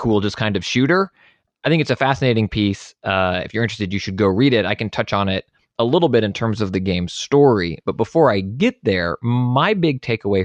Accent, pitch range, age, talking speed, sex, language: American, 100-125 Hz, 20-39, 240 wpm, male, English